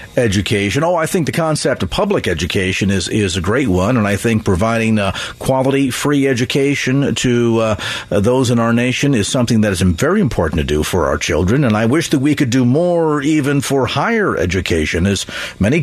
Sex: male